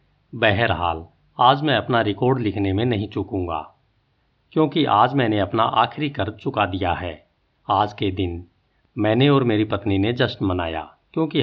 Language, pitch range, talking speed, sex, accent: Hindi, 100-130 Hz, 150 wpm, male, native